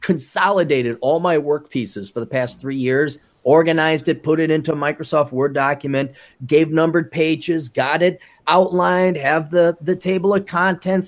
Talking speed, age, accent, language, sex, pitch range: 170 wpm, 30-49, American, English, male, 145-215 Hz